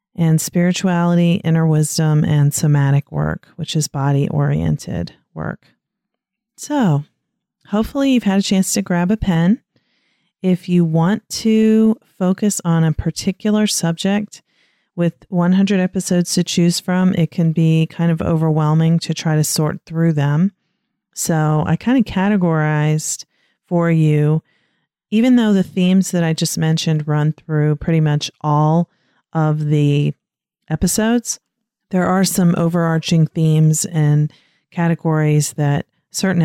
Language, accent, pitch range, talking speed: English, American, 155-190 Hz, 130 wpm